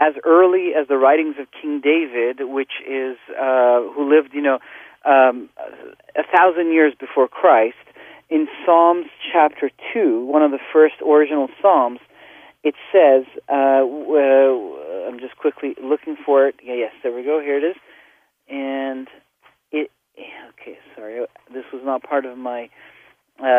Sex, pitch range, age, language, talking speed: male, 140-180 Hz, 40-59, English, 150 wpm